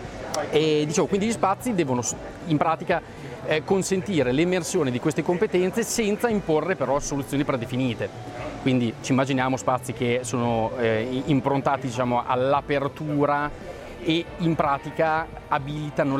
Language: Italian